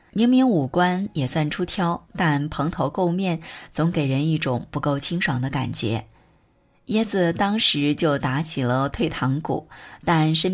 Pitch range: 140-175 Hz